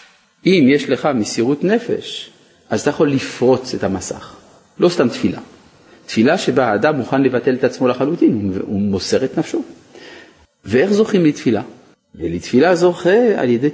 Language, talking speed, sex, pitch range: Hebrew, 145 wpm, male, 120-190 Hz